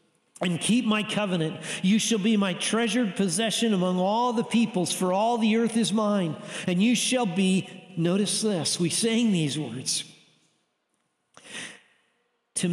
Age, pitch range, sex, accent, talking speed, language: 50-69, 195-240 Hz, male, American, 145 wpm, English